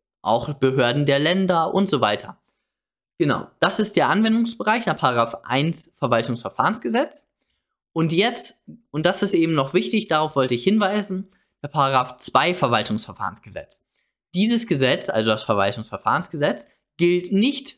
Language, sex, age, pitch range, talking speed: German, male, 20-39, 130-185 Hz, 130 wpm